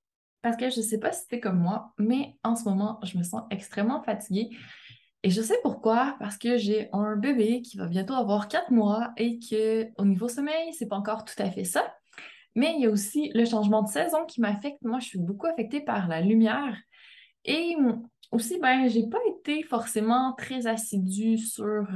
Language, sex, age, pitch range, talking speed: French, female, 20-39, 210-260 Hz, 205 wpm